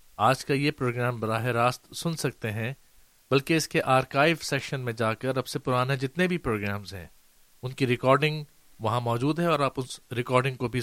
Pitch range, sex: 115-145 Hz, male